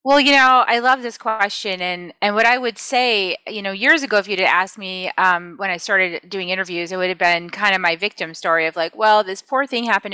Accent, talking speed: American, 260 wpm